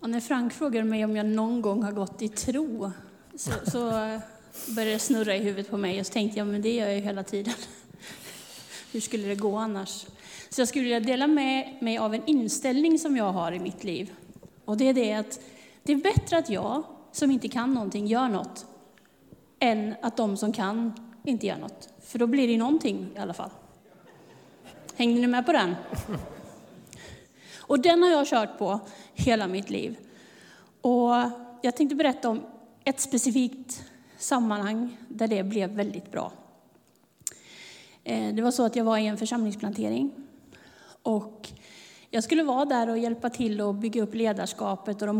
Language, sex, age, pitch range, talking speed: Swedish, female, 30-49, 210-260 Hz, 180 wpm